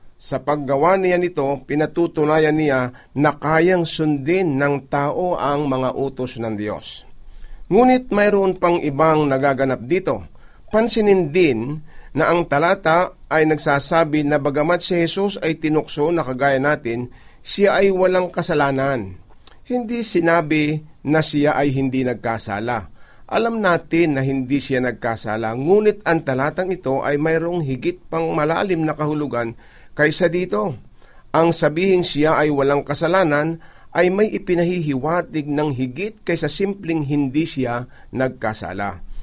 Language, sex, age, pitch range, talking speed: Filipino, male, 40-59, 135-170 Hz, 130 wpm